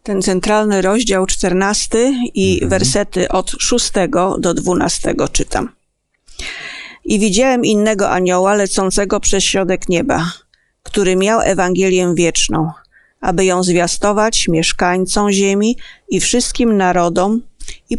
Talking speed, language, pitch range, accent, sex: 105 wpm, Polish, 185-220 Hz, native, female